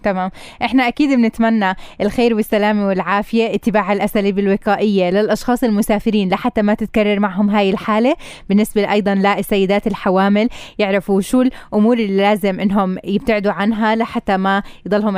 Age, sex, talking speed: 20-39, female, 130 wpm